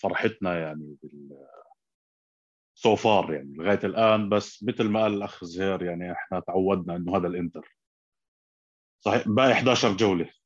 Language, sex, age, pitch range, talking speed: Arabic, male, 30-49, 95-115 Hz, 125 wpm